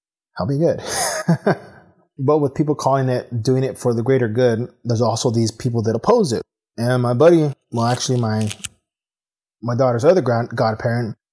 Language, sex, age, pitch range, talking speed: English, male, 20-39, 110-130 Hz, 170 wpm